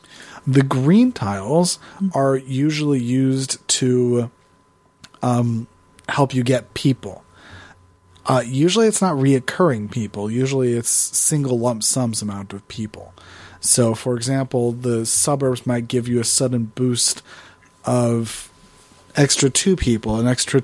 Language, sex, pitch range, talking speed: English, male, 115-140 Hz, 125 wpm